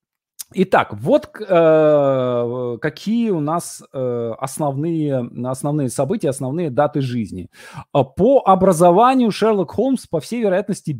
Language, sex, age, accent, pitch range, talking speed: Russian, male, 20-39, native, 130-185 Hz, 110 wpm